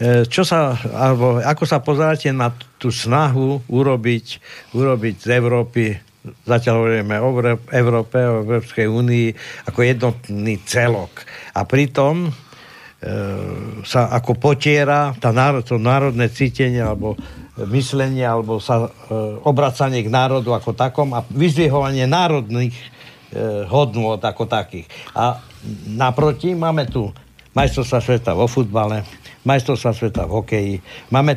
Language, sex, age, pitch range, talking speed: Slovak, male, 60-79, 115-145 Hz, 120 wpm